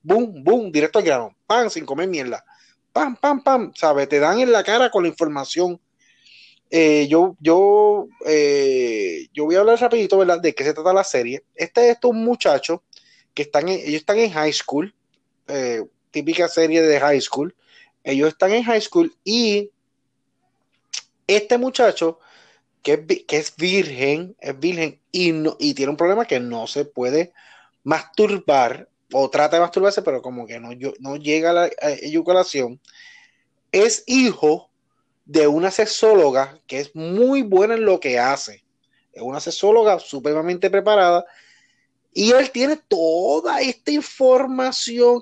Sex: male